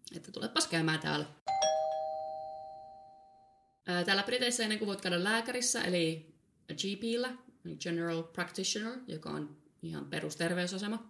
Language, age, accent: Finnish, 20-39, native